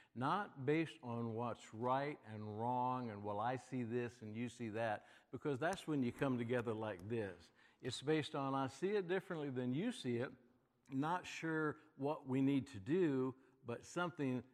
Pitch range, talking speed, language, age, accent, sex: 110-135 Hz, 180 wpm, English, 60-79, American, male